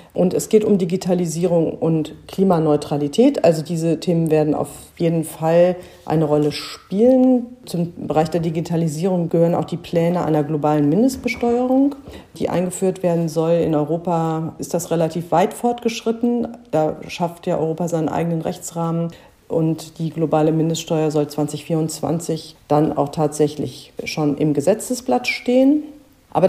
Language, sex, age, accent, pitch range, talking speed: German, female, 50-69, German, 150-180 Hz, 135 wpm